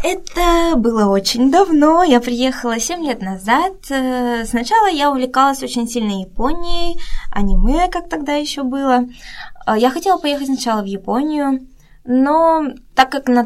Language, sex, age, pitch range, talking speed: Russian, female, 20-39, 200-270 Hz, 135 wpm